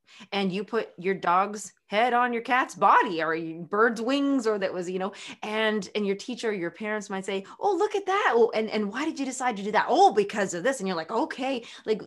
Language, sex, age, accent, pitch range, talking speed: English, female, 20-39, American, 190-245 Hz, 245 wpm